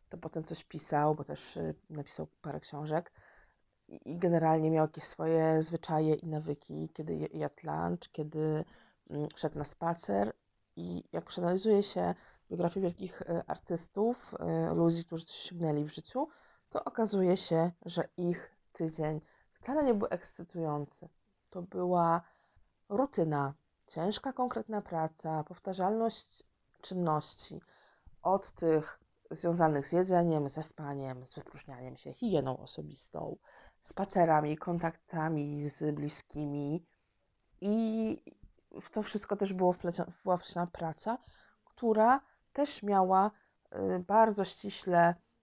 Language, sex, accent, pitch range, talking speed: Polish, female, native, 155-195 Hz, 115 wpm